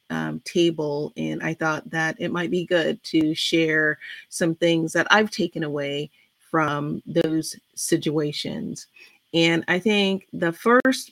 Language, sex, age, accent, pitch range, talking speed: English, female, 30-49, American, 160-190 Hz, 140 wpm